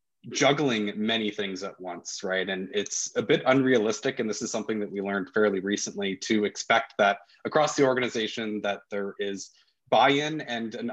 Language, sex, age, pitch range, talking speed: English, male, 20-39, 100-120 Hz, 175 wpm